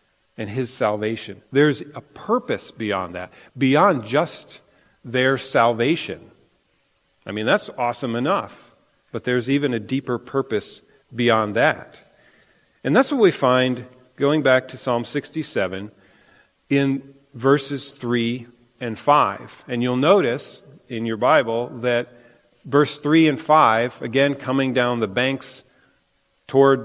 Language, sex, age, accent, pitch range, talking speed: English, male, 40-59, American, 110-140 Hz, 125 wpm